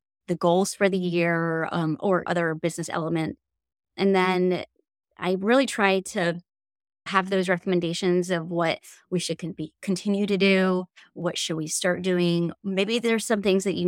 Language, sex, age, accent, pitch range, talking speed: English, female, 30-49, American, 170-195 Hz, 170 wpm